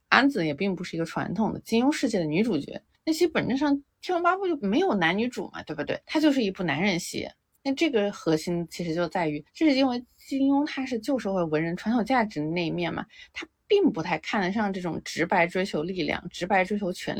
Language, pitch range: Chinese, 175-245 Hz